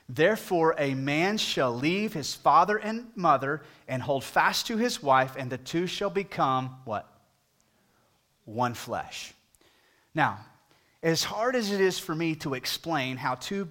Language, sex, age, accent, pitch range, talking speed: English, male, 30-49, American, 130-180 Hz, 155 wpm